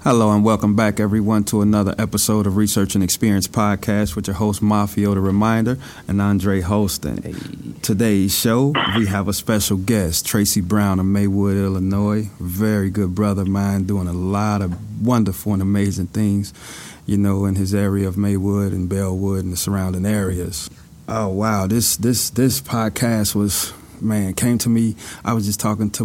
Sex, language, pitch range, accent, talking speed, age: male, English, 95-115 Hz, American, 175 wpm, 30-49